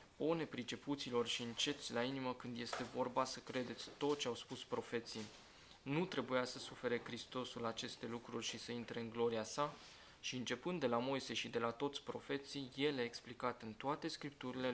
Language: Romanian